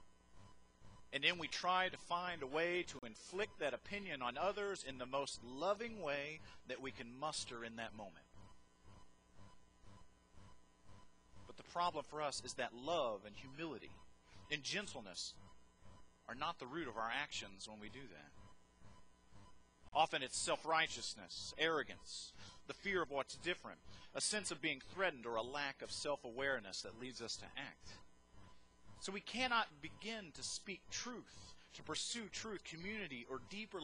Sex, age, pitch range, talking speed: male, 40-59, 100-165 Hz, 155 wpm